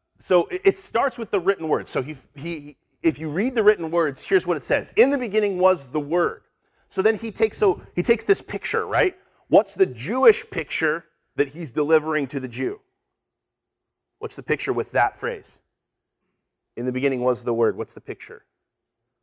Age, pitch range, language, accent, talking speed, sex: 30-49, 145-215 Hz, English, American, 190 wpm, male